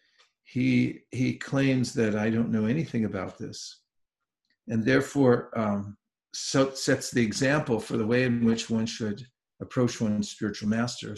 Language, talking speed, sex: English, 145 wpm, male